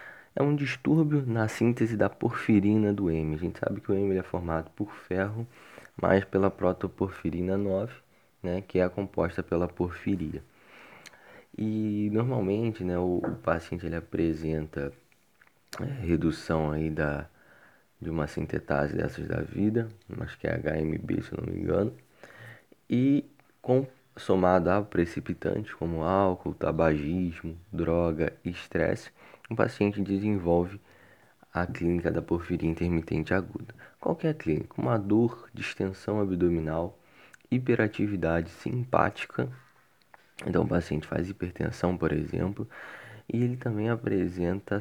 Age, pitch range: 20-39, 85-105 Hz